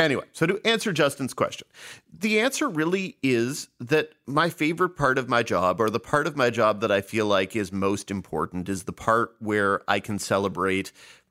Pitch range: 95-125 Hz